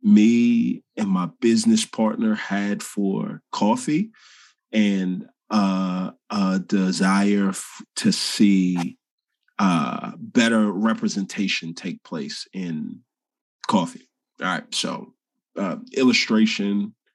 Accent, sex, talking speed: American, male, 100 wpm